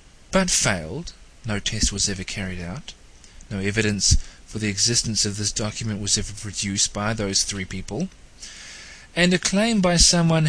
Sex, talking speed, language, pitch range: male, 160 wpm, English, 100-140 Hz